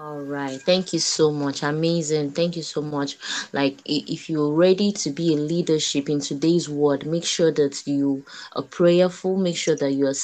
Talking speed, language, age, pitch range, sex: 195 wpm, English, 20-39, 150-185 Hz, female